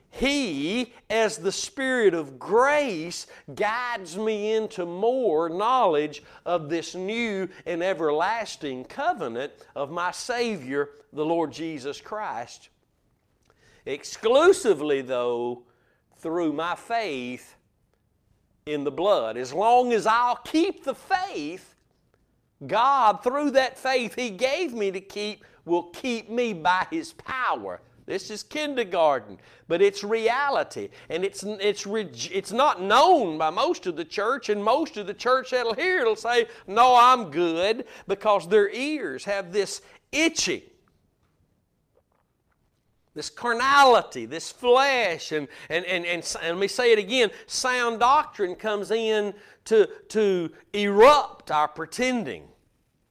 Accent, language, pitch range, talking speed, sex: American, English, 175-255 Hz, 125 wpm, male